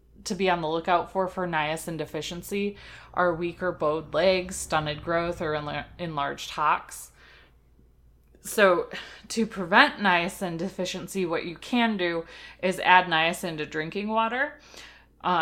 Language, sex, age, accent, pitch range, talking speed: English, female, 20-39, American, 155-185 Hz, 130 wpm